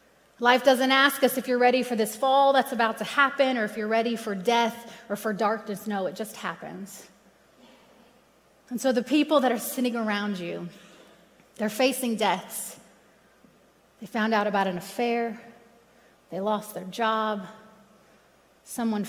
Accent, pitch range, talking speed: American, 210-235 Hz, 155 wpm